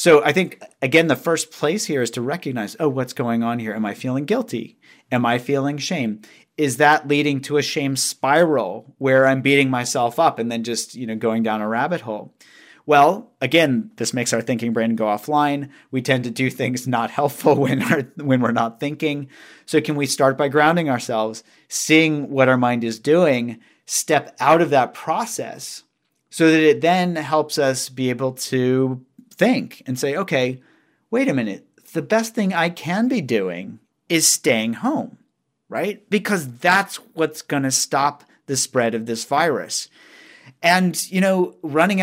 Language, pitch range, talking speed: English, 125-165 Hz, 185 wpm